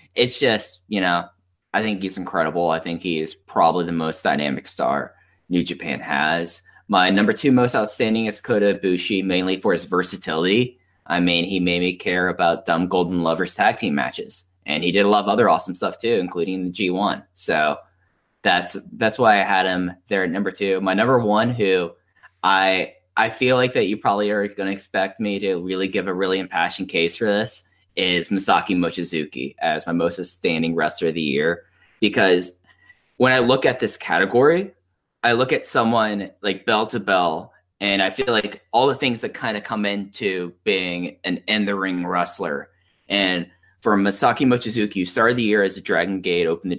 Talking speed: 190 wpm